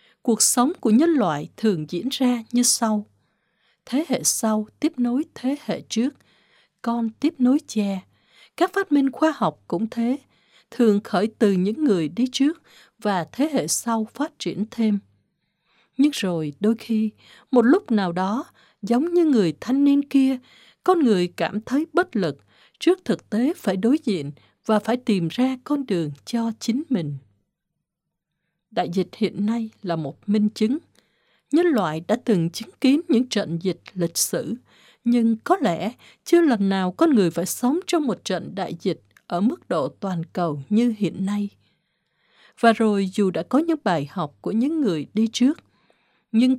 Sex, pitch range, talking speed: female, 185-260 Hz, 175 wpm